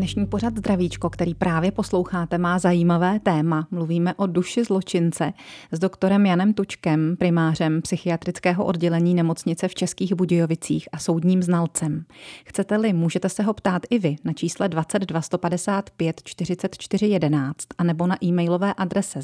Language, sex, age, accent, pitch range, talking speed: Czech, female, 30-49, native, 170-200 Hz, 135 wpm